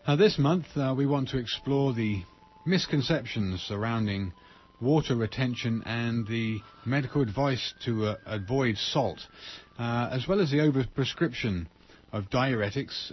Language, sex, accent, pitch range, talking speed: English, male, British, 105-135 Hz, 135 wpm